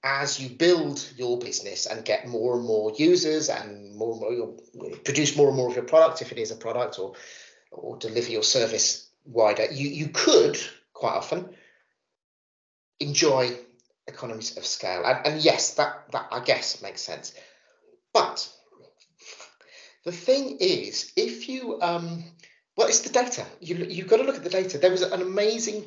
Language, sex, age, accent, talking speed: English, male, 30-49, British, 170 wpm